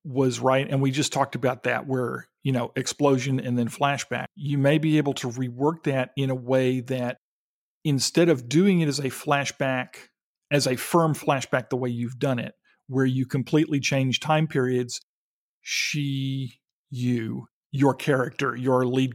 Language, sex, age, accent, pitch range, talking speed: English, male, 40-59, American, 130-150 Hz, 170 wpm